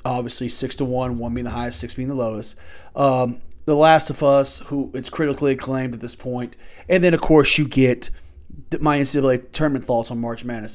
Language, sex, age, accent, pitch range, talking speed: English, male, 30-49, American, 120-150 Hz, 205 wpm